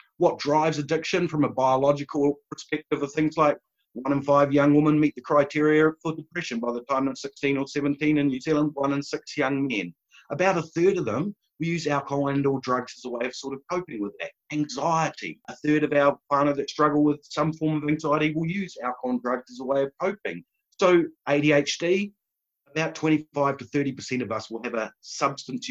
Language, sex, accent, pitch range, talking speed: English, male, Australian, 130-155 Hz, 210 wpm